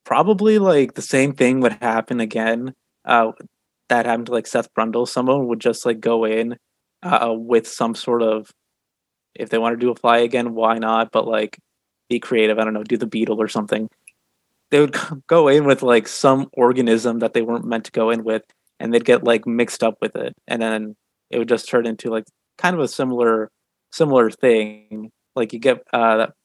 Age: 20-39